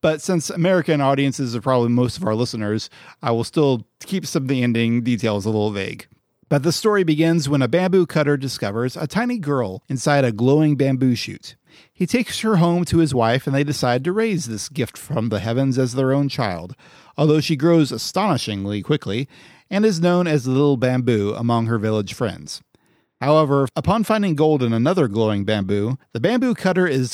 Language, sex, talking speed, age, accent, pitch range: English, male, 195 wpm, 30-49, American, 115-160 Hz